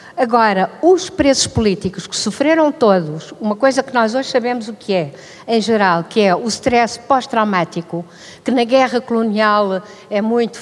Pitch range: 210-260 Hz